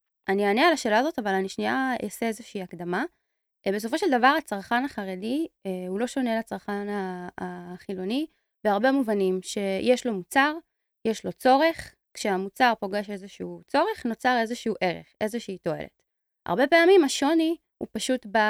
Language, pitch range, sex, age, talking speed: Hebrew, 195-250 Hz, female, 20-39, 145 wpm